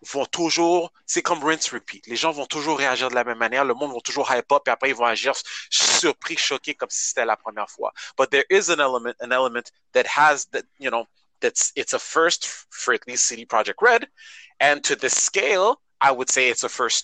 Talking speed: 230 wpm